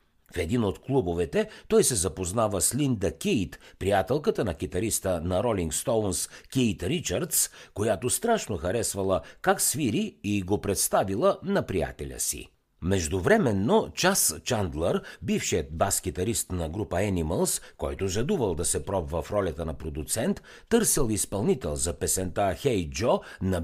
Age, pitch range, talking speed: 60-79, 85-115 Hz, 135 wpm